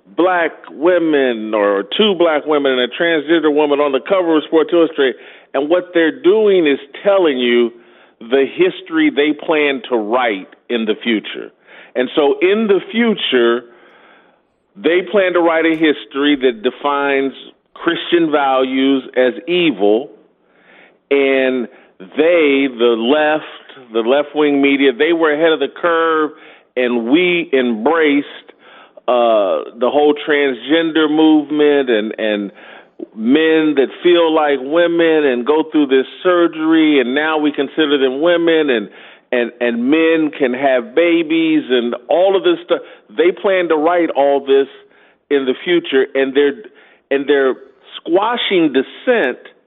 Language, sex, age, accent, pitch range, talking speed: English, male, 40-59, American, 130-170 Hz, 140 wpm